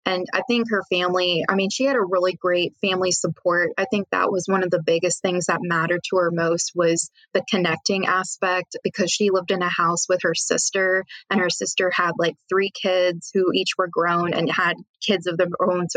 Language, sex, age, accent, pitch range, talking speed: English, female, 20-39, American, 175-200 Hz, 220 wpm